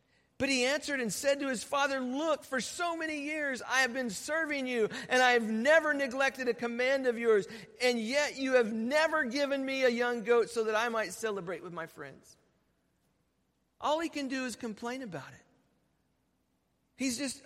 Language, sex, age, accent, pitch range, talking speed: English, male, 50-69, American, 165-260 Hz, 190 wpm